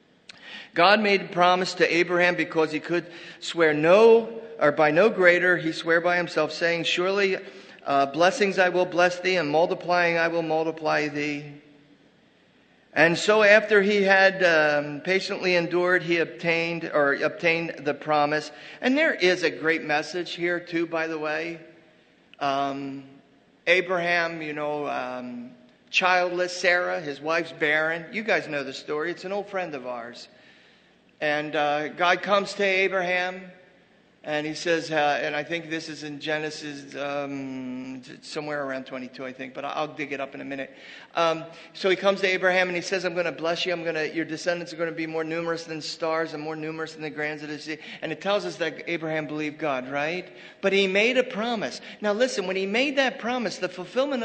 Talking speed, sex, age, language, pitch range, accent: 190 wpm, male, 40-59, English, 150-185 Hz, American